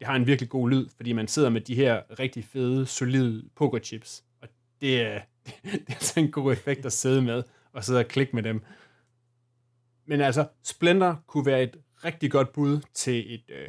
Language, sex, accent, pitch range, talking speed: Danish, male, native, 120-140 Hz, 195 wpm